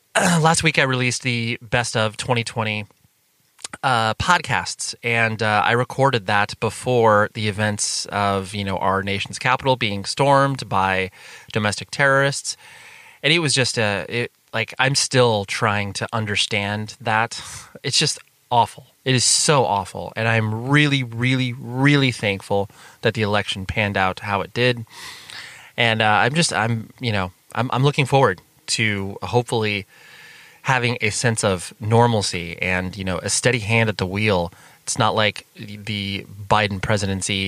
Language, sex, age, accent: English, male, 20-39, American